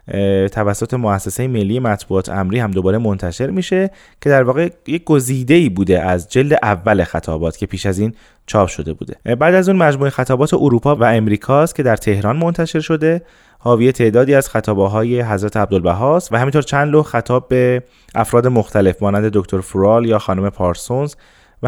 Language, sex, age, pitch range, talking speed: Persian, male, 20-39, 100-140 Hz, 165 wpm